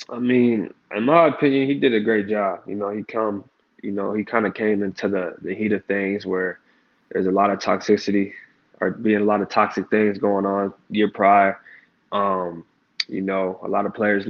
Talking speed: 210 wpm